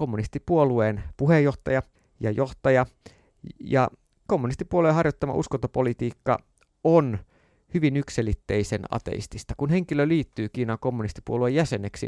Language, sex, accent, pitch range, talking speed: Finnish, male, native, 110-145 Hz, 90 wpm